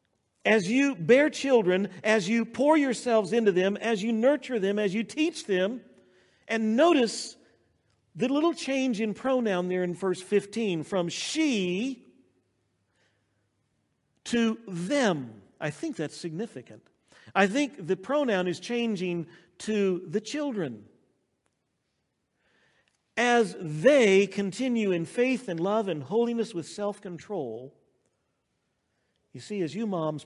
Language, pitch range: English, 150-225 Hz